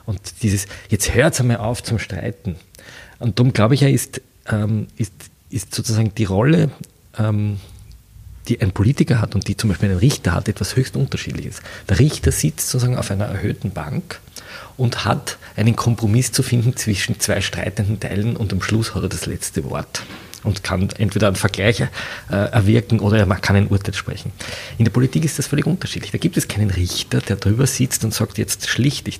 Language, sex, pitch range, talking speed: German, male, 100-125 Hz, 185 wpm